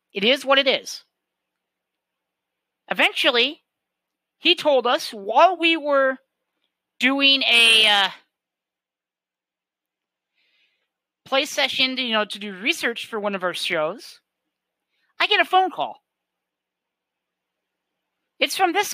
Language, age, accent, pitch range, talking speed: English, 40-59, American, 205-285 Hz, 115 wpm